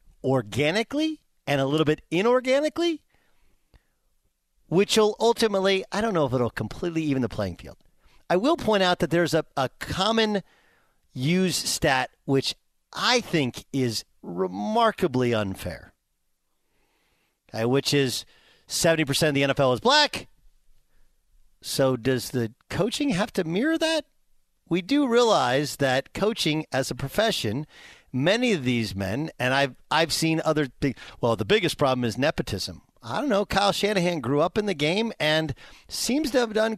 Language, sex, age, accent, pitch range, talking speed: English, male, 50-69, American, 130-200 Hz, 145 wpm